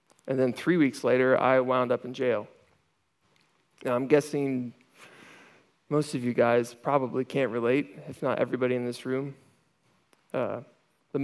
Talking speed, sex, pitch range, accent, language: 150 wpm, male, 130-150 Hz, American, English